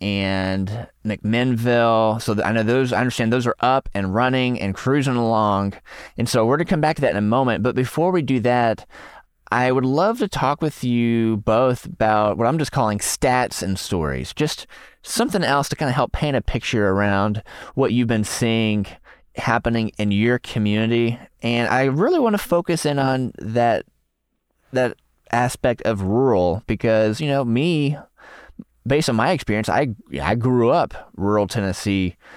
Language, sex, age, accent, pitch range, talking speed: English, male, 20-39, American, 105-130 Hz, 175 wpm